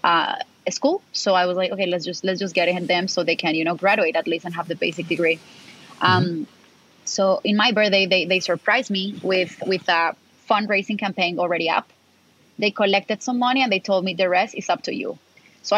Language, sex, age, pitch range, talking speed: English, female, 20-39, 180-210 Hz, 230 wpm